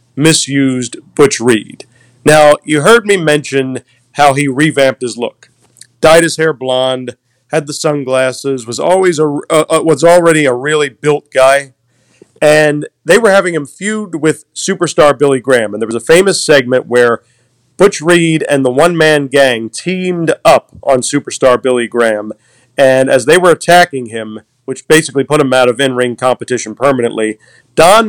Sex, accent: male, American